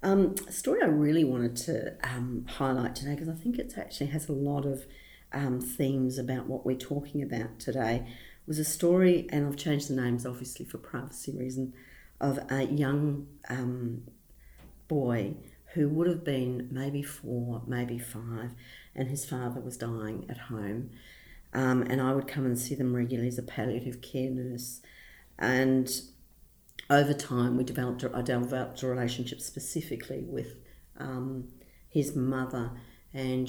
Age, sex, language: 50-69, female, English